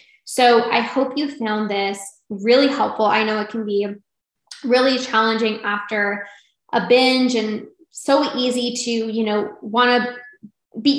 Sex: female